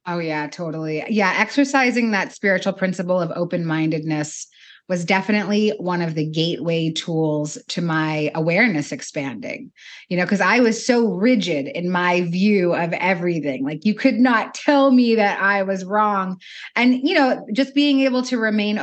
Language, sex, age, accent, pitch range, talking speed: English, female, 20-39, American, 175-220 Hz, 165 wpm